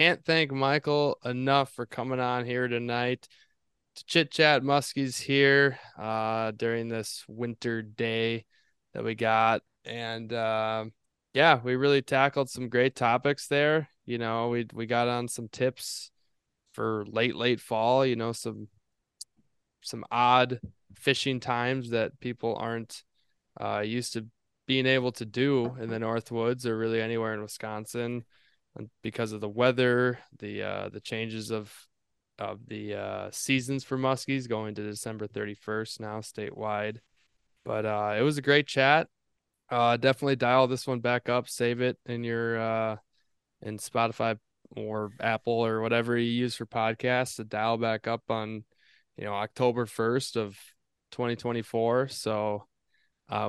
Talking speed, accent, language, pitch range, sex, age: 145 wpm, American, English, 110-125 Hz, male, 20-39